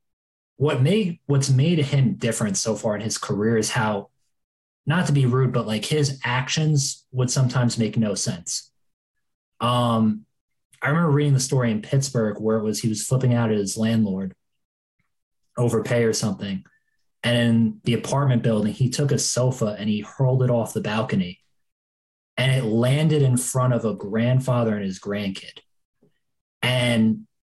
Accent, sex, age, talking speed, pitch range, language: American, male, 20-39, 165 wpm, 110-135 Hz, English